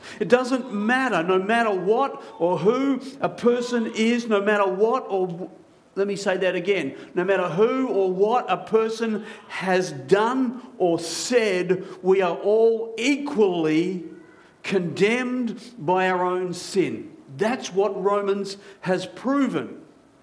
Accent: Australian